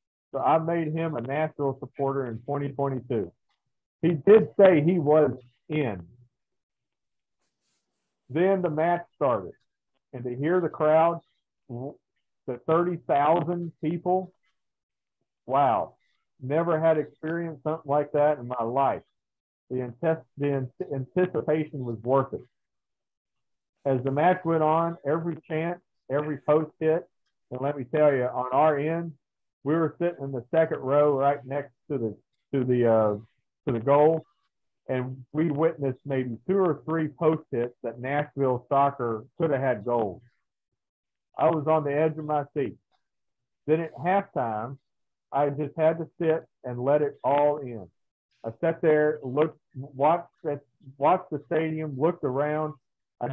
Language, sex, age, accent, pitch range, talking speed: English, male, 50-69, American, 130-160 Hz, 140 wpm